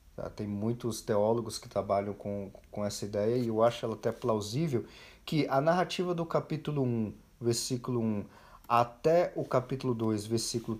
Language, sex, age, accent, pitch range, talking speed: Portuguese, male, 40-59, Brazilian, 115-150 Hz, 155 wpm